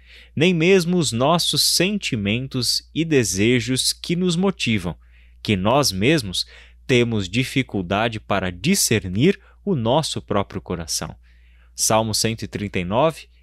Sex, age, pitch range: male, 20-39, 95-130 Hz